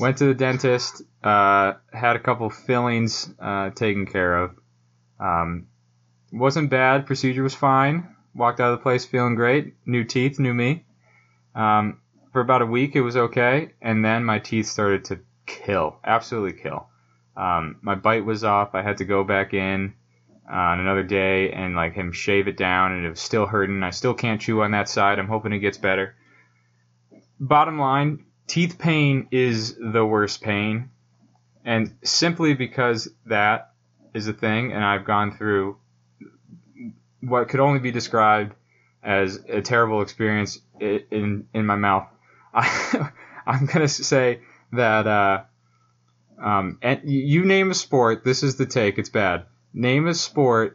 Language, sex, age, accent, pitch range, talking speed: English, male, 20-39, American, 95-125 Hz, 165 wpm